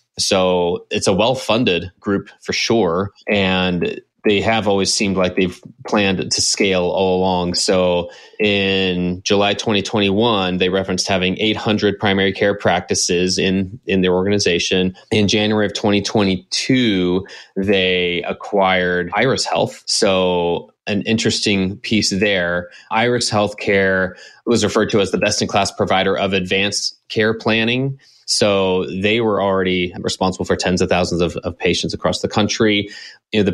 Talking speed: 135 wpm